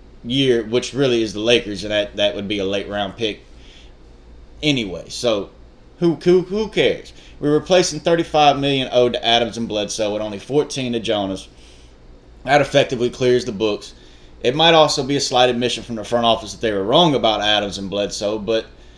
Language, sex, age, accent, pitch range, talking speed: English, male, 20-39, American, 100-135 Hz, 190 wpm